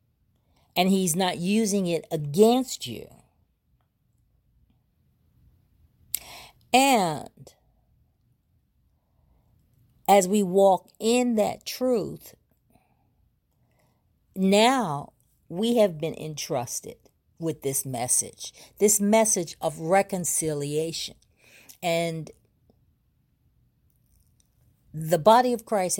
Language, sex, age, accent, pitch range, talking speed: English, female, 40-59, American, 135-200 Hz, 70 wpm